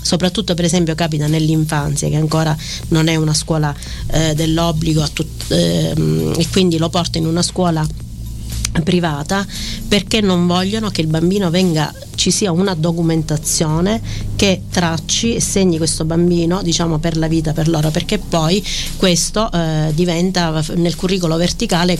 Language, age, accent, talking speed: Italian, 40-59, native, 140 wpm